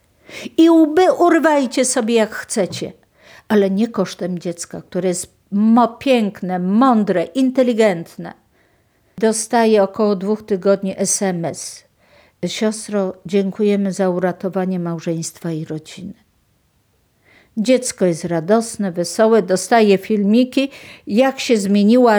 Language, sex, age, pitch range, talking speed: Polish, female, 50-69, 185-235 Hz, 95 wpm